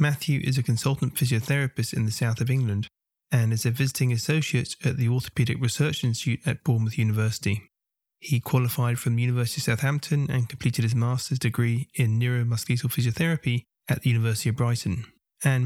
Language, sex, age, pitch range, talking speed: English, male, 20-39, 120-140 Hz, 170 wpm